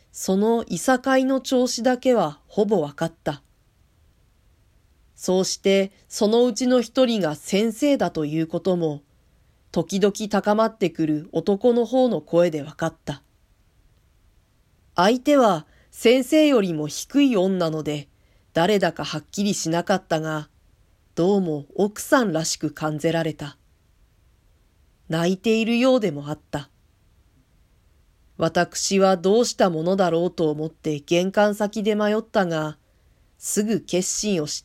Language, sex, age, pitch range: Japanese, female, 40-59, 145-210 Hz